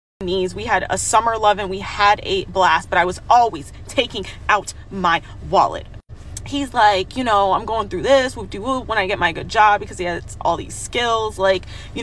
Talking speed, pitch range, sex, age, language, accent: 205 wpm, 180-265 Hz, female, 20-39, English, American